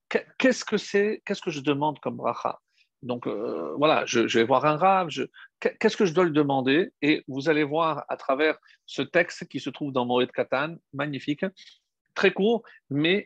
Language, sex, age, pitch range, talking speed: French, male, 50-69, 140-180 Hz, 190 wpm